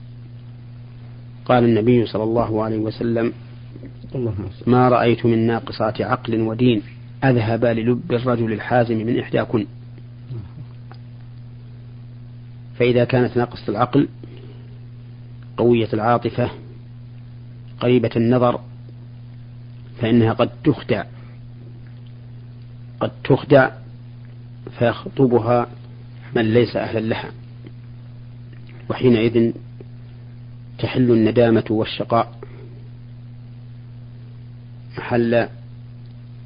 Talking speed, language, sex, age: 65 wpm, Arabic, male, 40-59